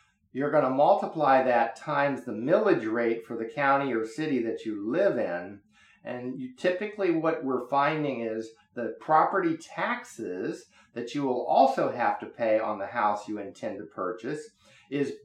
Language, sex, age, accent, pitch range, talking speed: English, male, 50-69, American, 110-150 Hz, 165 wpm